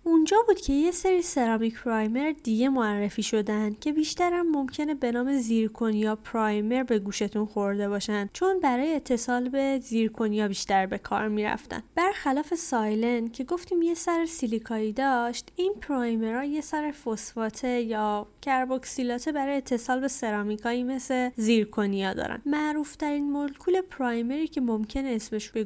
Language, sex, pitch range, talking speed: Persian, female, 220-295 Hz, 145 wpm